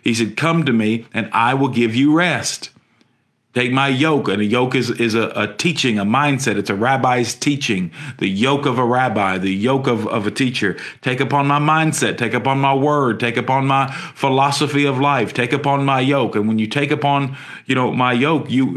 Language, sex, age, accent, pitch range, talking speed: English, male, 40-59, American, 120-150 Hz, 215 wpm